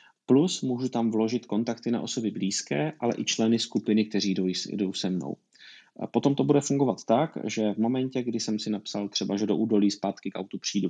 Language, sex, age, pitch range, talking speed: Czech, male, 30-49, 105-125 Hz, 205 wpm